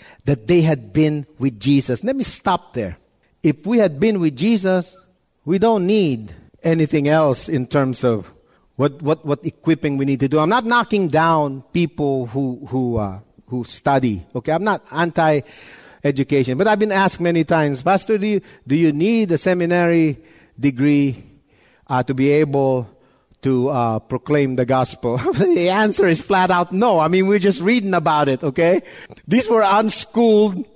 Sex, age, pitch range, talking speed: male, 50-69, 140-200 Hz, 170 wpm